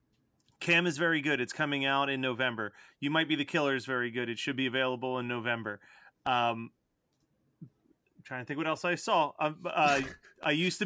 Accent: American